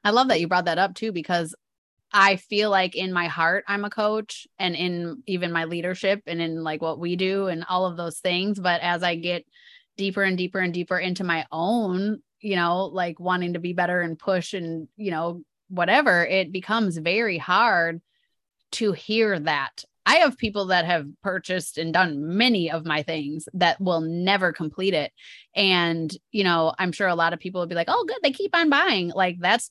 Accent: American